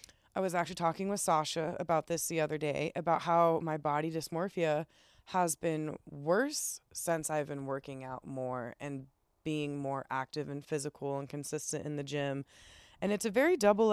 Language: English